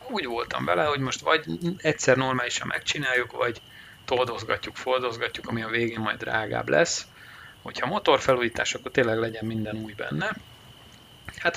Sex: male